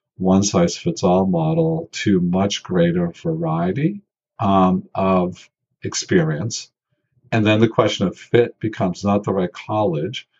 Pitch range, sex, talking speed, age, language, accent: 95-160 Hz, male, 135 wpm, 50-69, English, American